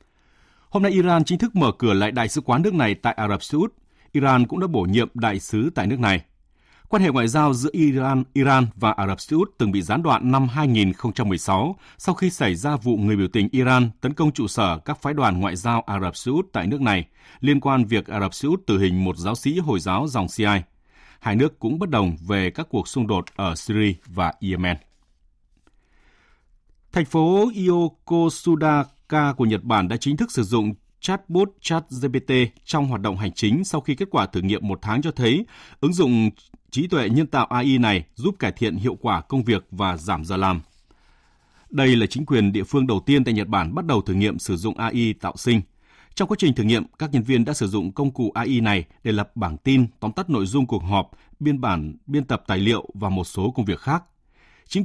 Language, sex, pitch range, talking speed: Vietnamese, male, 100-140 Hz, 225 wpm